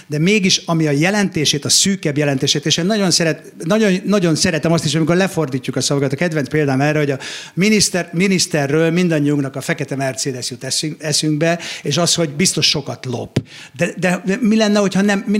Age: 50-69